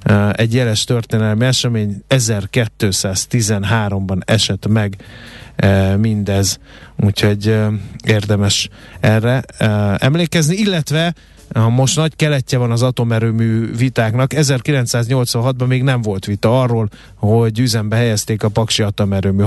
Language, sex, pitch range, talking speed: Hungarian, male, 105-130 Hz, 100 wpm